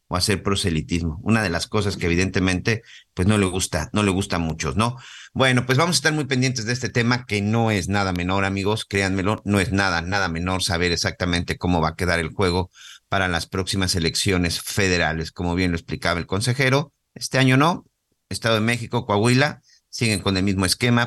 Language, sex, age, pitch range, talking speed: Spanish, male, 50-69, 90-120 Hz, 205 wpm